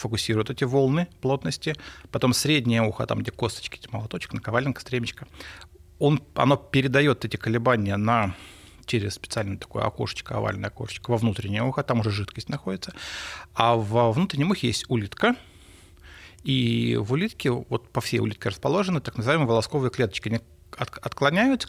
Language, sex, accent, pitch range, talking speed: Russian, male, native, 100-130 Hz, 140 wpm